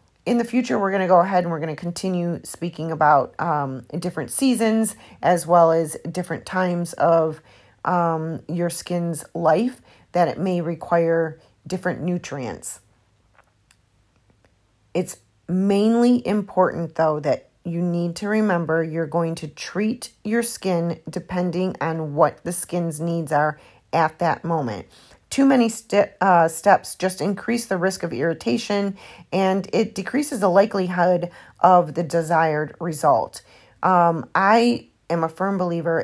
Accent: American